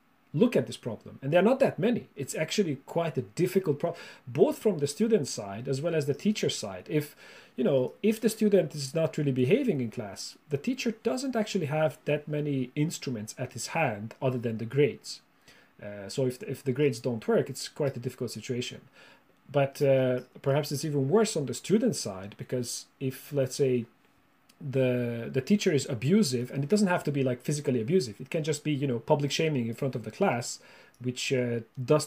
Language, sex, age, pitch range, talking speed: English, male, 40-59, 125-160 Hz, 205 wpm